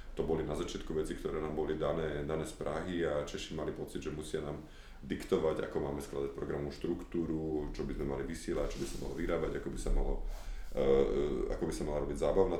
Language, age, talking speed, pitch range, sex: Slovak, 30-49, 215 wpm, 70-90 Hz, male